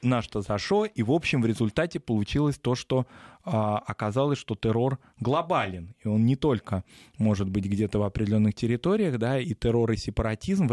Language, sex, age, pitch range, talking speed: Russian, male, 20-39, 105-125 Hz, 175 wpm